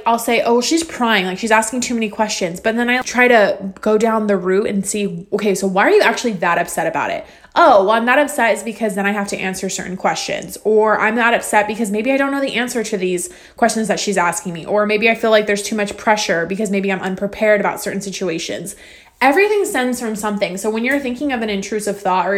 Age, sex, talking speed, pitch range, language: 20-39, female, 245 wpm, 200-245 Hz, English